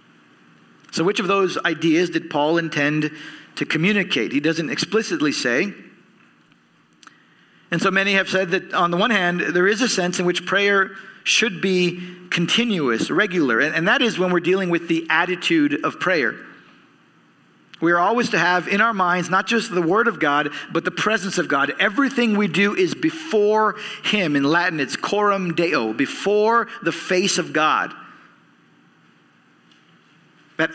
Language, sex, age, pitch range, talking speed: English, male, 50-69, 160-200 Hz, 160 wpm